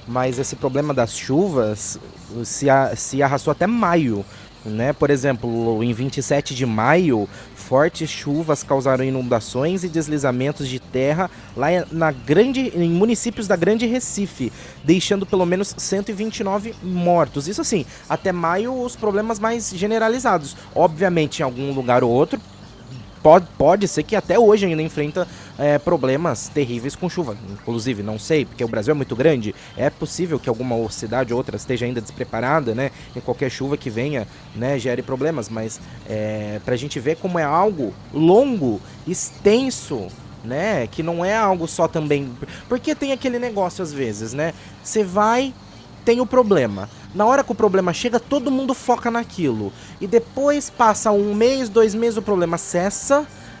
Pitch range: 125-200 Hz